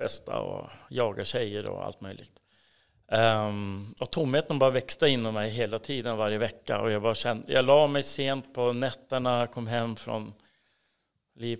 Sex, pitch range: male, 105-130 Hz